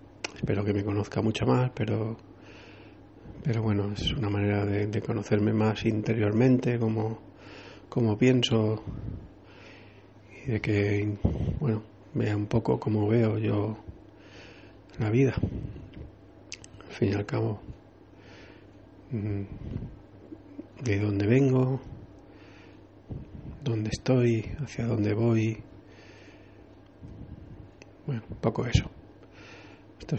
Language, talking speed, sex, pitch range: English, 95 wpm, male, 100-115 Hz